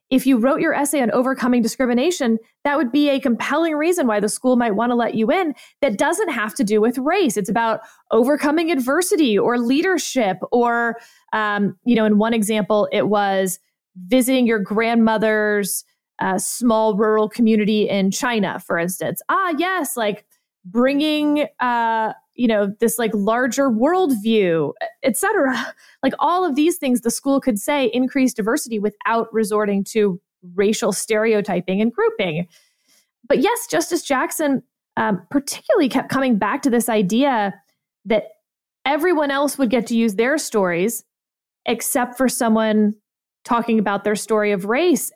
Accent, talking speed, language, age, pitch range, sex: American, 155 wpm, English, 20-39, 215-280 Hz, female